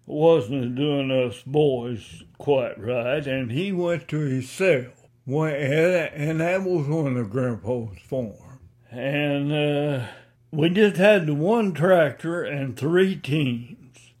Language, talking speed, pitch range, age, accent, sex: English, 125 wpm, 120-150 Hz, 60-79, American, male